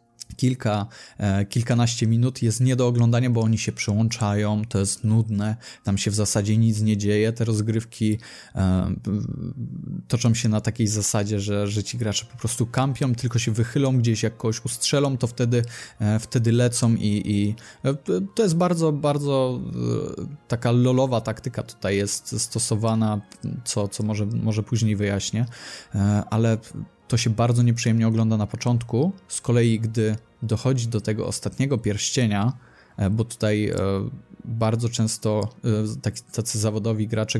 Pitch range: 105-120 Hz